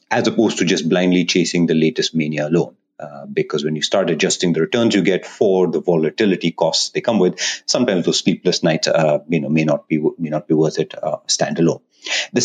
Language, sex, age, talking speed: English, male, 30-49, 220 wpm